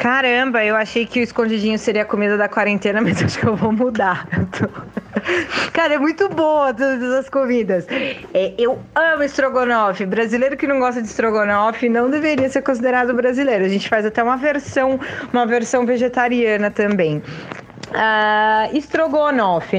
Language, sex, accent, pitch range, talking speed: Portuguese, female, Brazilian, 200-255 Hz, 160 wpm